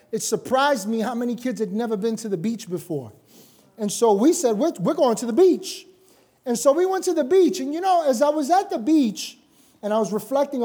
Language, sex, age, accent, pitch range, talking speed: English, male, 30-49, American, 195-280 Hz, 240 wpm